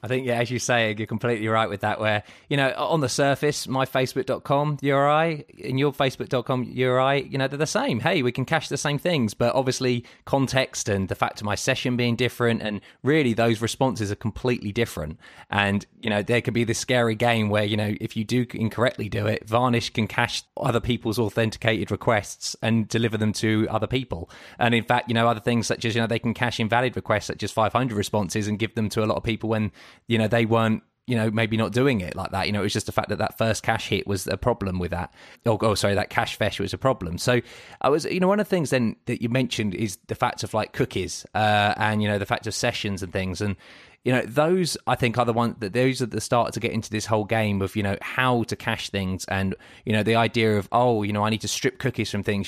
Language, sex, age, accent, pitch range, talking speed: English, male, 20-39, British, 105-125 Hz, 255 wpm